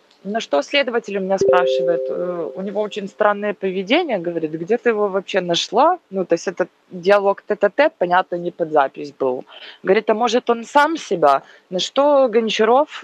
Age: 20-39